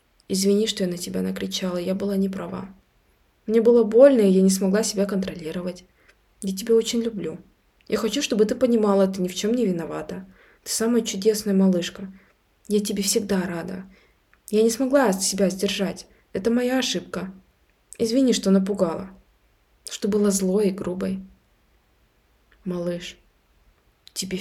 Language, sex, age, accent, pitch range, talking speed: Russian, female, 20-39, native, 180-210 Hz, 150 wpm